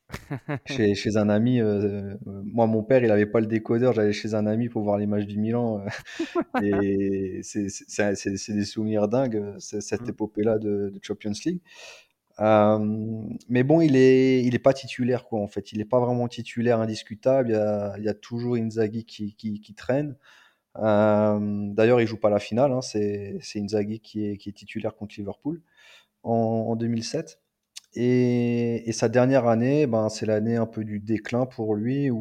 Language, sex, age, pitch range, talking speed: French, male, 30-49, 105-120 Hz, 195 wpm